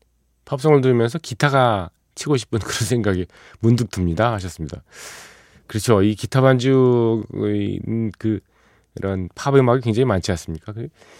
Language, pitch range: Korean, 85-120 Hz